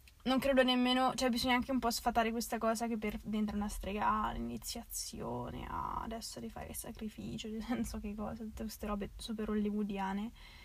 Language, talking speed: Italian, 185 wpm